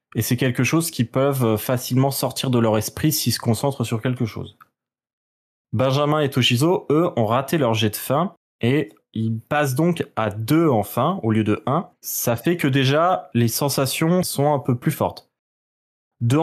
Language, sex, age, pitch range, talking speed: French, male, 20-39, 115-155 Hz, 185 wpm